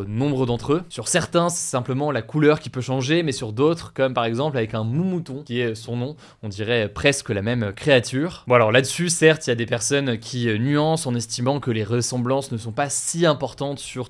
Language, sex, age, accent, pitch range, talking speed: French, male, 20-39, French, 120-155 Hz, 230 wpm